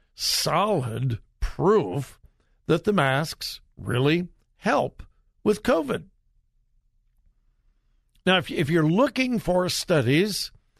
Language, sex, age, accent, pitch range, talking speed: English, male, 60-79, American, 125-180 Hz, 85 wpm